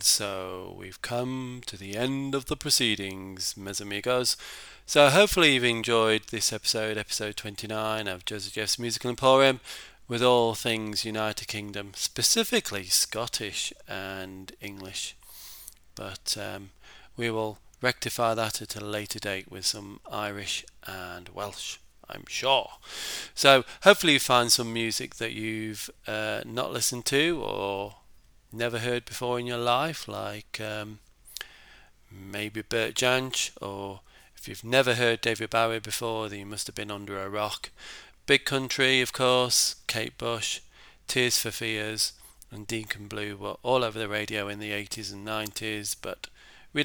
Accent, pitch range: British, 100-120 Hz